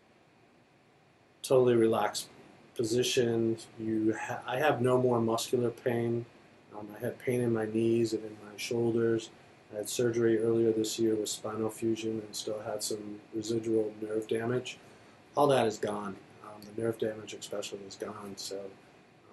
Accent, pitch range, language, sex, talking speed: American, 105-115 Hz, English, male, 155 wpm